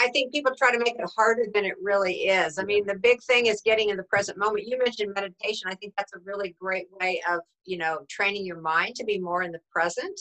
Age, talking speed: 50-69, 265 wpm